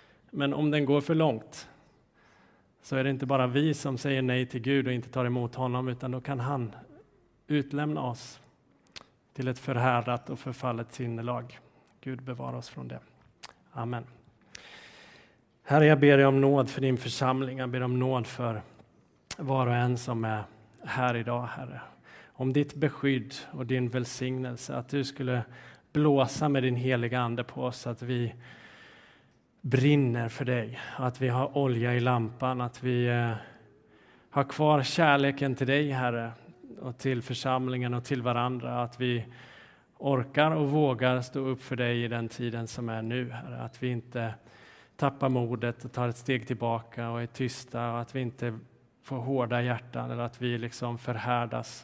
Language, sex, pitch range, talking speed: Swedish, male, 120-135 Hz, 165 wpm